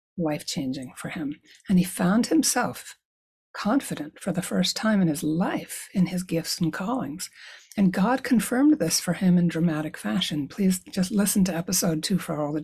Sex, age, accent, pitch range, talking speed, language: female, 60-79, American, 170-230 Hz, 180 wpm, English